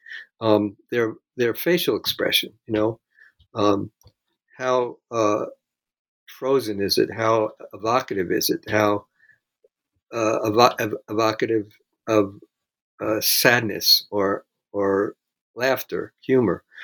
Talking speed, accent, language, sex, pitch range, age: 105 wpm, American, English, male, 105-135 Hz, 60-79